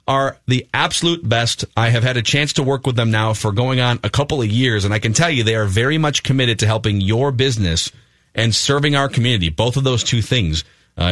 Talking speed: 245 wpm